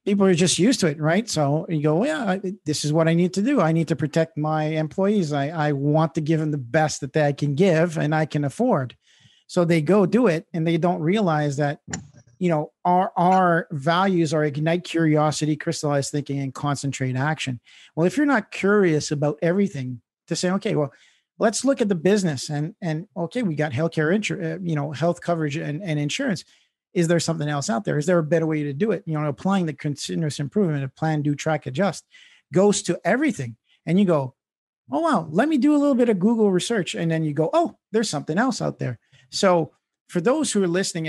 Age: 50-69